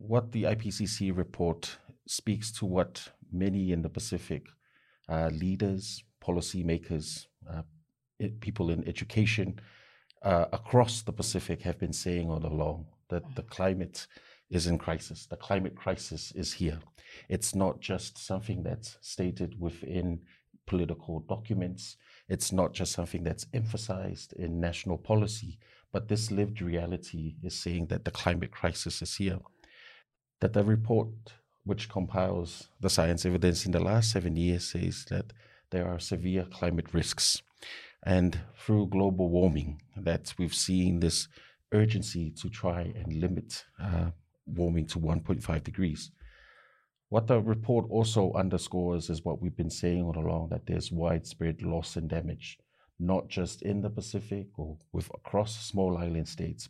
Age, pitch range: 50-69, 85-105 Hz